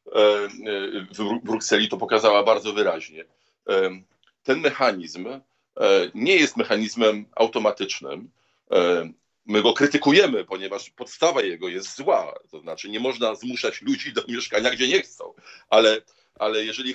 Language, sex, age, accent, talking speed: Polish, male, 40-59, native, 120 wpm